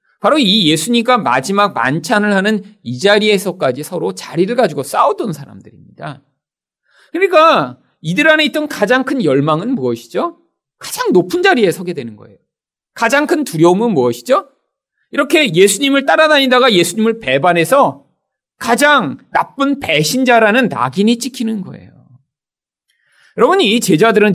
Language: Korean